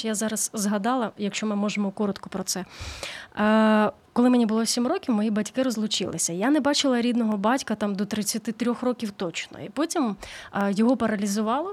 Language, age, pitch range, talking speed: Ukrainian, 20-39, 205-245 Hz, 160 wpm